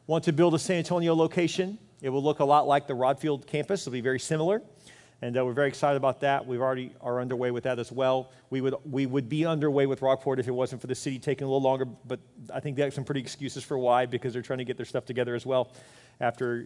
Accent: American